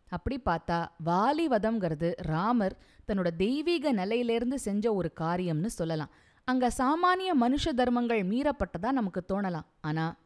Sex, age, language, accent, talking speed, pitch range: female, 20-39, Tamil, native, 110 wpm, 175-255 Hz